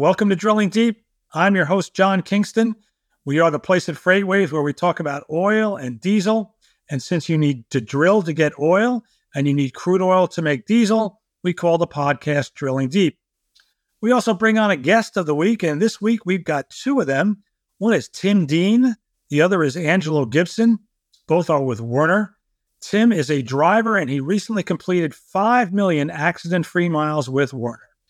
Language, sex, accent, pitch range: English, male, American, 145-200 Hz